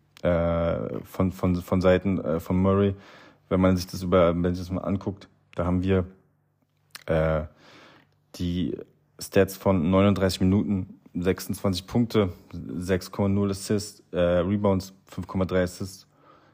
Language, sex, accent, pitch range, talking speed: German, male, German, 90-105 Hz, 125 wpm